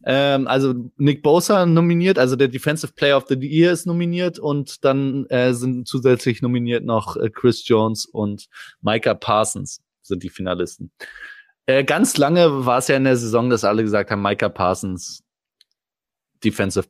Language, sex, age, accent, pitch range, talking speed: German, male, 20-39, German, 100-135 Hz, 155 wpm